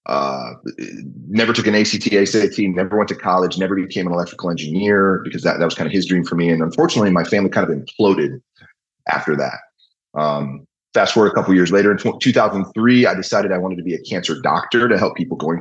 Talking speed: 225 wpm